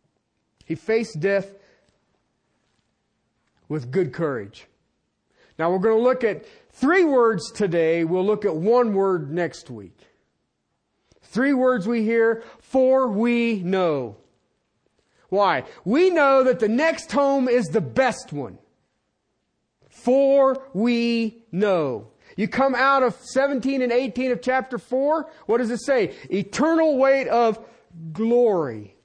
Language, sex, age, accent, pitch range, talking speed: English, male, 40-59, American, 180-255 Hz, 125 wpm